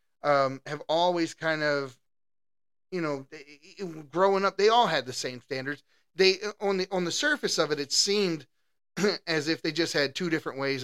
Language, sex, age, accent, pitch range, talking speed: English, male, 30-49, American, 130-160 Hz, 195 wpm